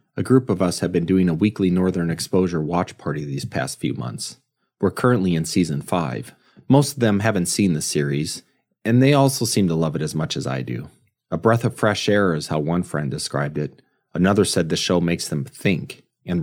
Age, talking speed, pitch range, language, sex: 30-49, 220 wpm, 90-120 Hz, English, male